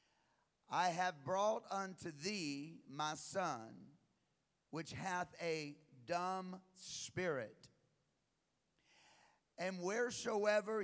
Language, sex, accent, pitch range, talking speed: English, male, American, 155-195 Hz, 80 wpm